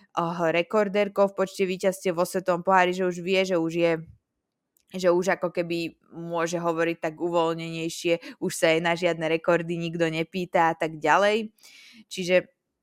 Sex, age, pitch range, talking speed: female, 20-39, 160-195 Hz, 145 wpm